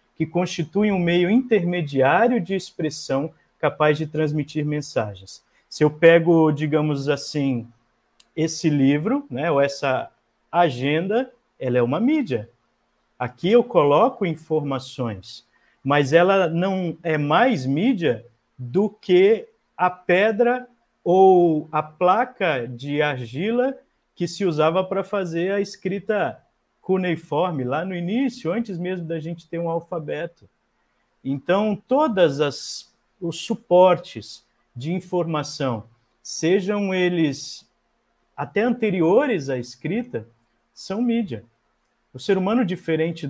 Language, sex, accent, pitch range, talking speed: Portuguese, male, Brazilian, 140-190 Hz, 115 wpm